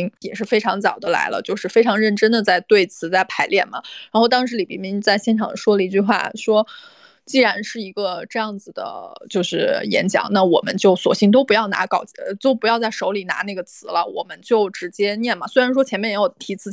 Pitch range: 205-260 Hz